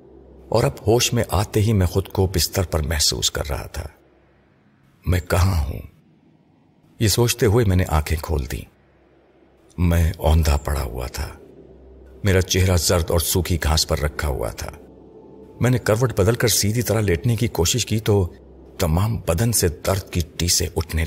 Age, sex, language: 50-69, male, Urdu